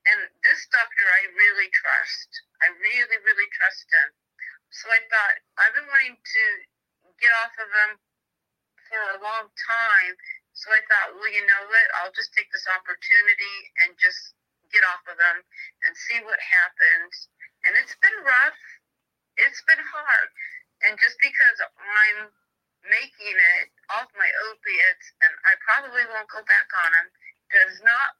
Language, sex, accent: English, female, American